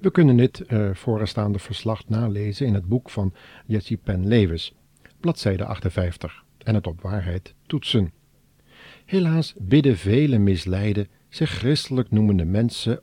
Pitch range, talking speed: 95-125 Hz, 135 wpm